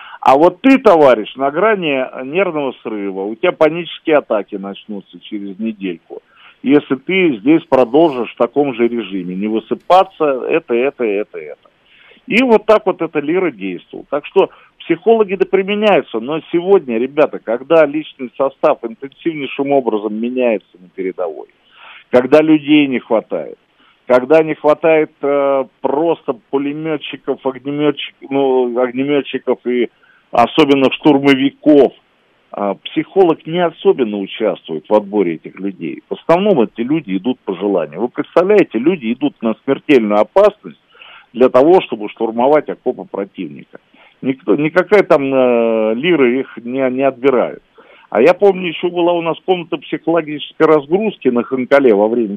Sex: male